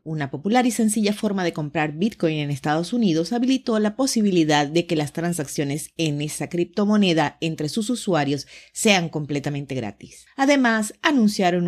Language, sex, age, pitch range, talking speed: Spanish, female, 40-59, 155-220 Hz, 150 wpm